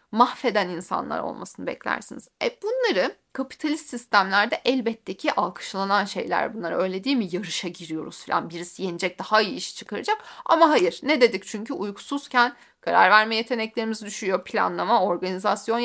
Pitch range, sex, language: 205-260 Hz, female, Turkish